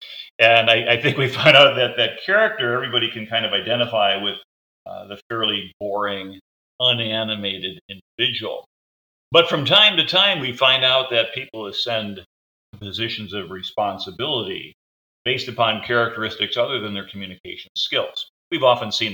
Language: English